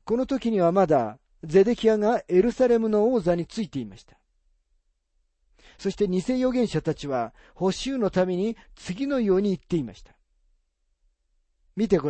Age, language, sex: 40-59, Japanese, male